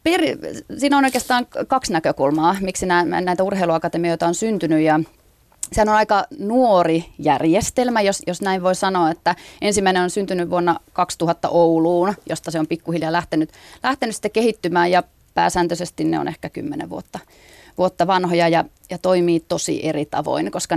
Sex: female